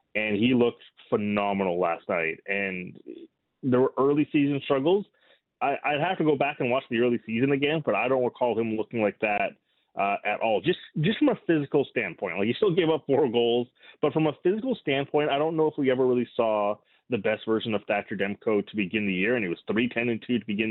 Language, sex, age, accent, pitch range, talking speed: English, male, 30-49, American, 105-140 Hz, 225 wpm